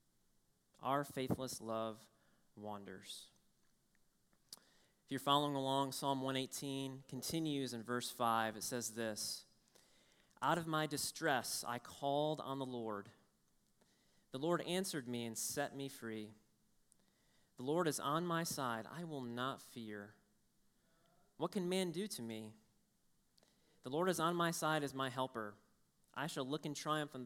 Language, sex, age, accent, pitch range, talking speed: English, male, 30-49, American, 120-155 Hz, 145 wpm